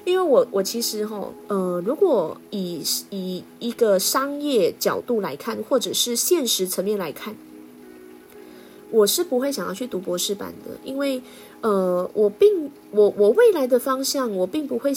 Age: 20-39